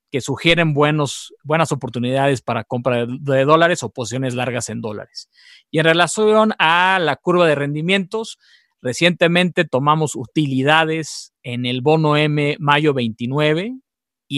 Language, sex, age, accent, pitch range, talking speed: English, male, 40-59, Mexican, 130-160 Hz, 140 wpm